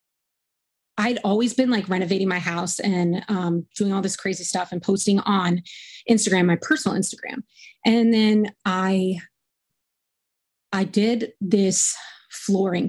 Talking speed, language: 130 wpm, English